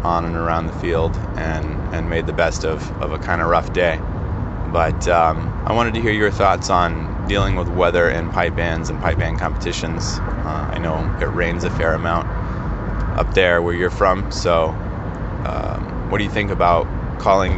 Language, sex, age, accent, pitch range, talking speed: English, male, 20-39, American, 80-95 Hz, 195 wpm